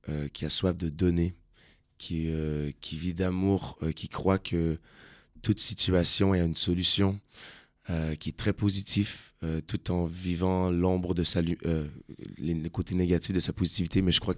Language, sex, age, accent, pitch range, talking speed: French, male, 20-39, French, 85-95 Hz, 175 wpm